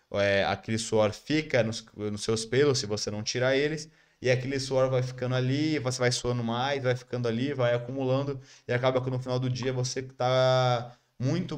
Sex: male